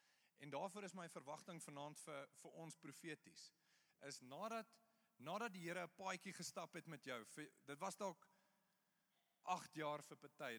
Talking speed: 140 wpm